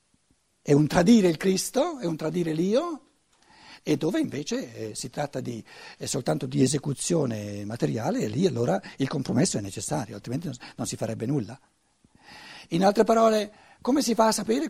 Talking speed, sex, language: 155 wpm, male, Italian